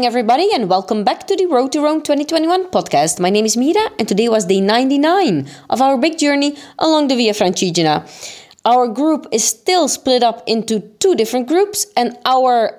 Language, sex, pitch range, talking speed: Italian, female, 200-260 Hz, 190 wpm